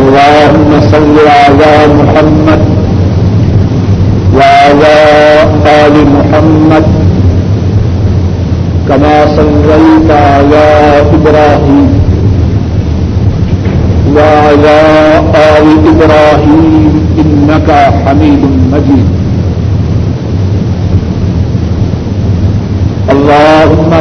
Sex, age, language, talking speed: male, 50-69, Urdu, 45 wpm